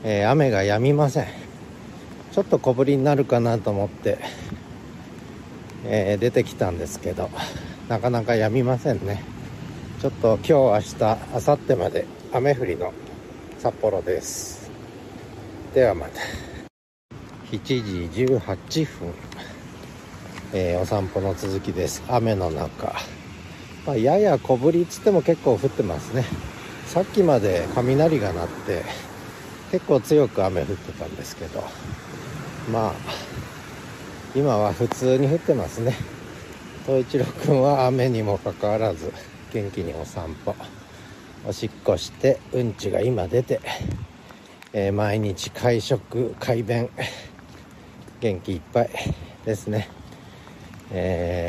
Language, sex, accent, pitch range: Japanese, male, native, 95-130 Hz